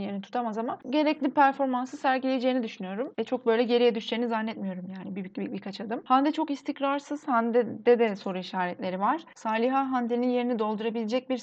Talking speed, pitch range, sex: 170 wpm, 210-250 Hz, female